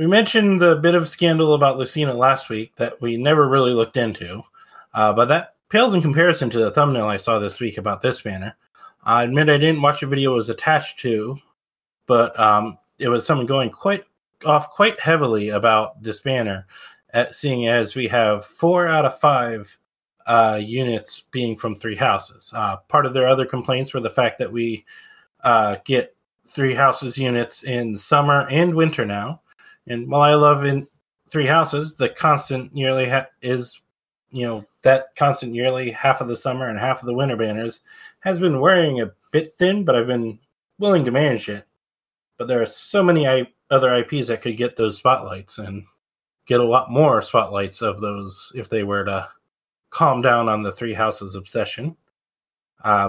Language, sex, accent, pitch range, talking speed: English, male, American, 110-150 Hz, 185 wpm